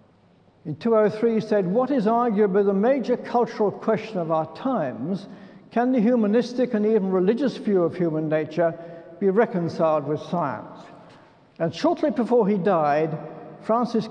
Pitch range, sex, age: 165-215 Hz, male, 60-79